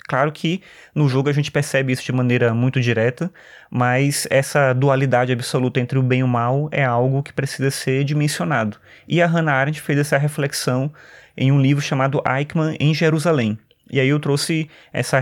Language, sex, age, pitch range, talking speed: Portuguese, male, 20-39, 125-150 Hz, 185 wpm